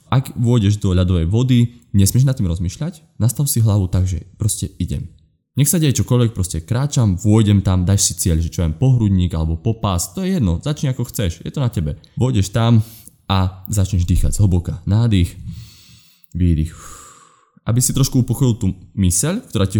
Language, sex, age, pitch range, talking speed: Slovak, male, 20-39, 85-115 Hz, 180 wpm